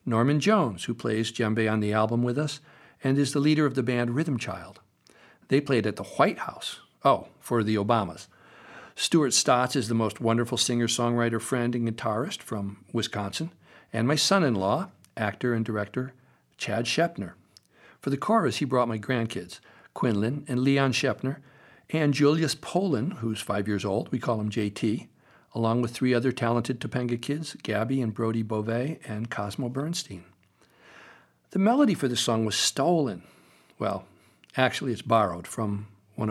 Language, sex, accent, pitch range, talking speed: English, male, American, 110-140 Hz, 160 wpm